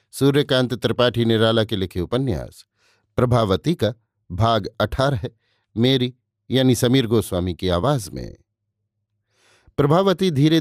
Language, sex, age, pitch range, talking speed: Hindi, male, 50-69, 105-125 Hz, 105 wpm